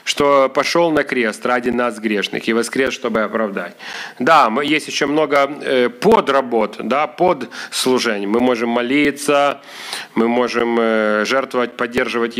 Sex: male